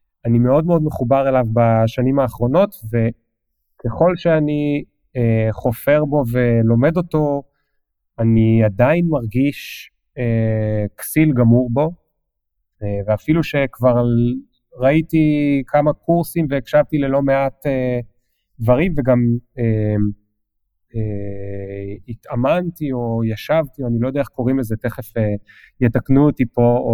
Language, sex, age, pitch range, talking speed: Hebrew, male, 30-49, 110-140 Hz, 115 wpm